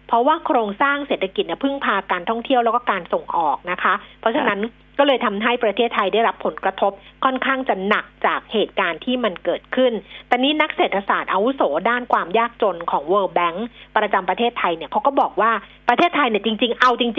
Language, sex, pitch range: Thai, female, 210-270 Hz